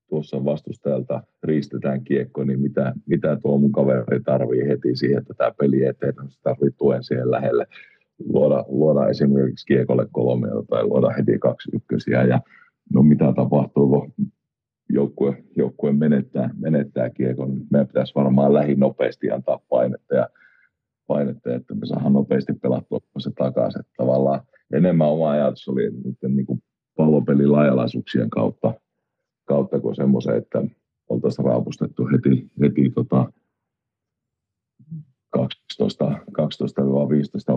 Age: 50-69